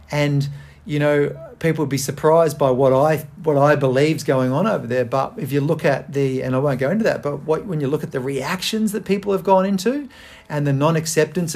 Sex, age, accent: male, 40-59, Australian